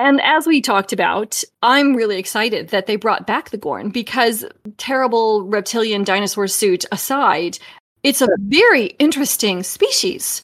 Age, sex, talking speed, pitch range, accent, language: 30-49, female, 145 wpm, 205-250 Hz, American, English